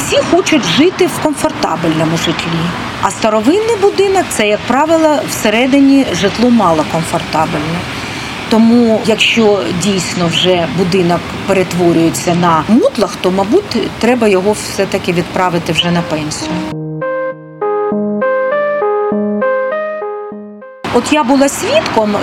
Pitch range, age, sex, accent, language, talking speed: 185-270 Hz, 40-59, female, native, Ukrainian, 105 wpm